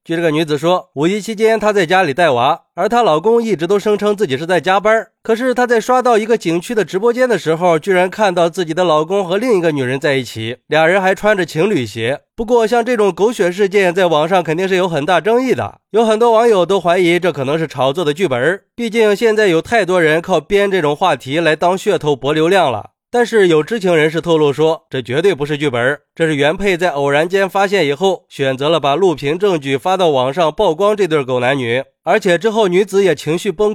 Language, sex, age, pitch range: Chinese, male, 20-39, 155-205 Hz